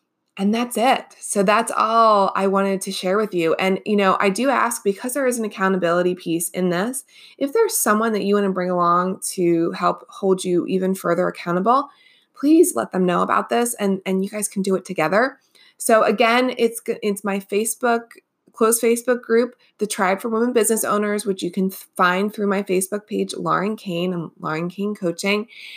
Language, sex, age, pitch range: English, female, 20-39, 185-230 Hz